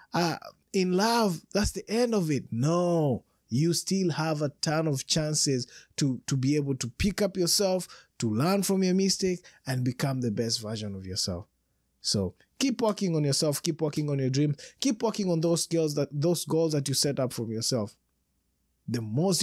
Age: 20-39